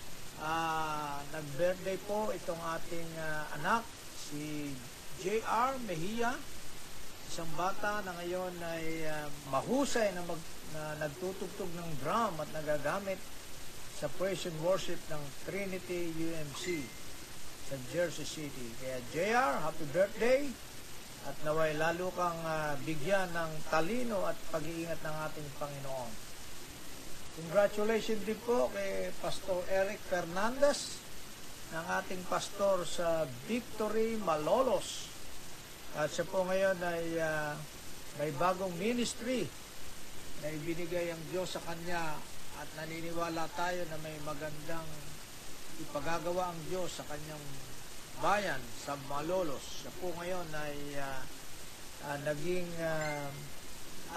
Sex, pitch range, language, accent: male, 150-185 Hz, Filipino, native